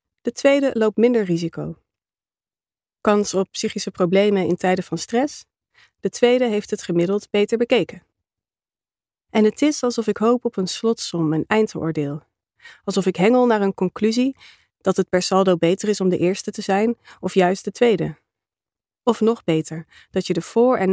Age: 30-49